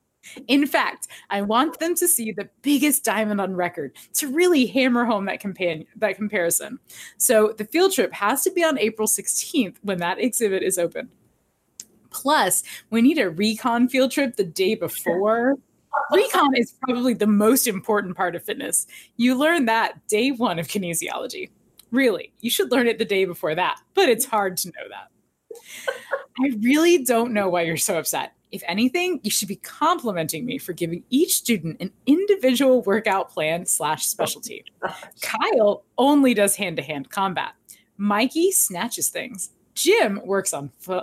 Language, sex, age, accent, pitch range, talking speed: English, female, 20-39, American, 195-270 Hz, 165 wpm